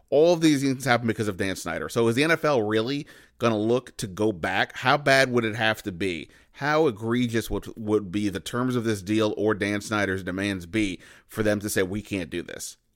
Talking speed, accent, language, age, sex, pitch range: 230 wpm, American, English, 30-49, male, 105-125 Hz